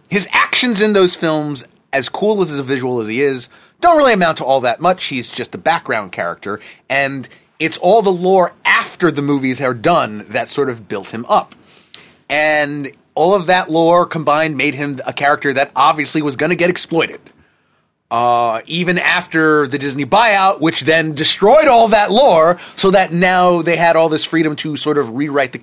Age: 30-49